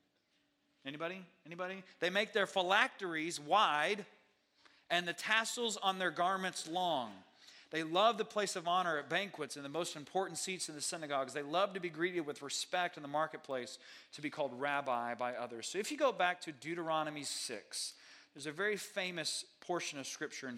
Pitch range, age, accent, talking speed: 135-170 Hz, 40-59, American, 180 wpm